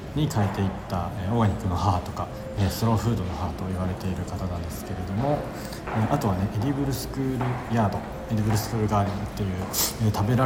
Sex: male